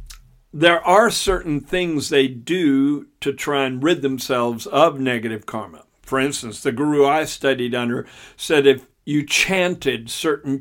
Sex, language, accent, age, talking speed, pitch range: male, English, American, 50-69, 145 wpm, 125-150 Hz